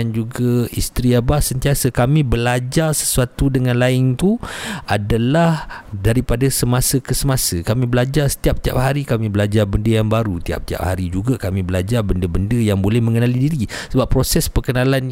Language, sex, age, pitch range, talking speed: Malay, male, 50-69, 105-130 Hz, 150 wpm